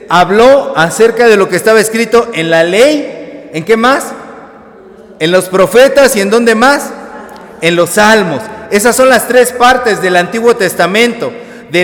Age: 40-59